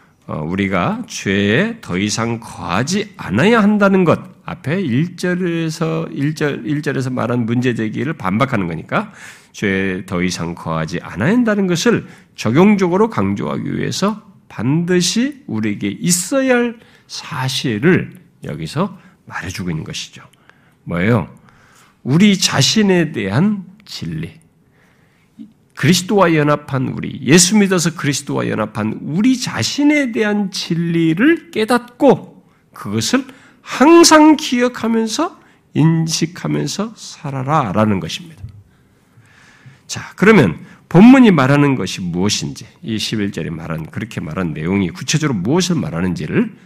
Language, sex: Korean, male